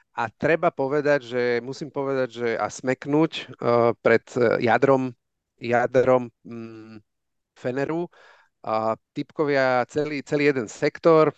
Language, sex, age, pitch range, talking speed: Slovak, male, 40-59, 115-140 Hz, 110 wpm